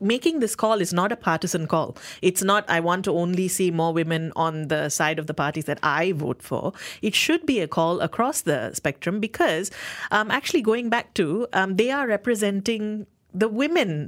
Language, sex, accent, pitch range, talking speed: English, female, Indian, 165-220 Hz, 200 wpm